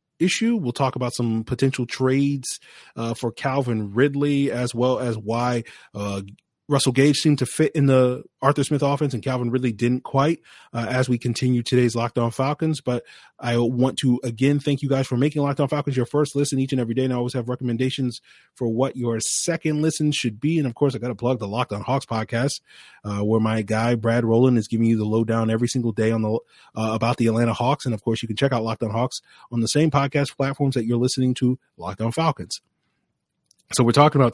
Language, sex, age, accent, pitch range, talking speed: English, male, 20-39, American, 115-135 Hz, 220 wpm